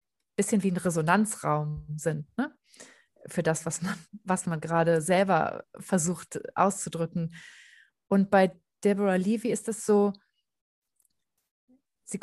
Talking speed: 120 wpm